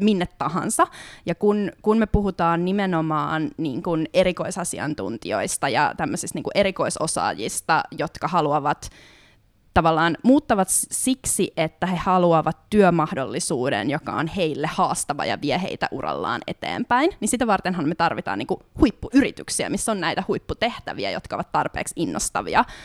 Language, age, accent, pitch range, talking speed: Finnish, 20-39, native, 165-215 Hz, 125 wpm